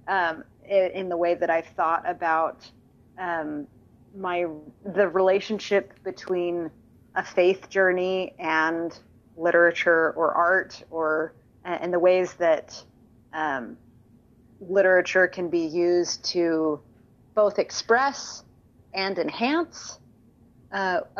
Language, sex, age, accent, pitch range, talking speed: English, female, 30-49, American, 160-195 Hz, 100 wpm